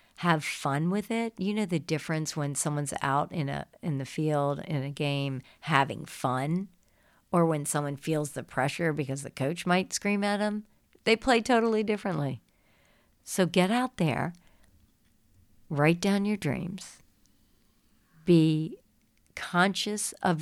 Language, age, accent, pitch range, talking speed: English, 50-69, American, 135-185 Hz, 145 wpm